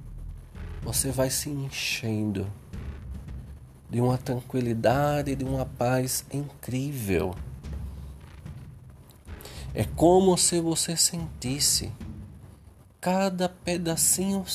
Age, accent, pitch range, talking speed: 40-59, Brazilian, 85-125 Hz, 75 wpm